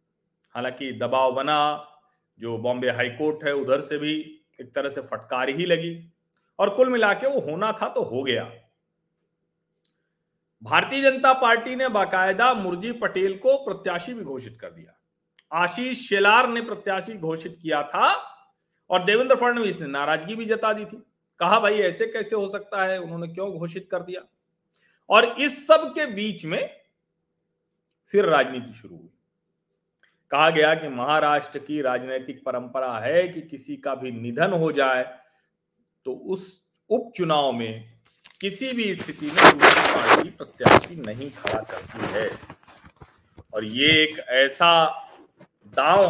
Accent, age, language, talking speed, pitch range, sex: native, 40-59, Hindi, 145 wpm, 145-225 Hz, male